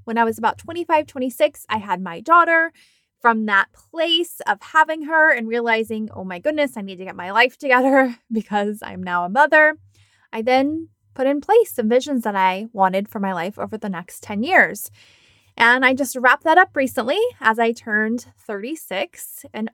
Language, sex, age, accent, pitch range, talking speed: English, female, 20-39, American, 205-270 Hz, 190 wpm